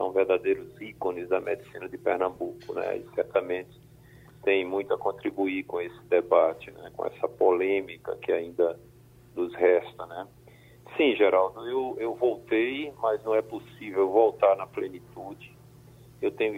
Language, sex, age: Portuguese, male, 50-69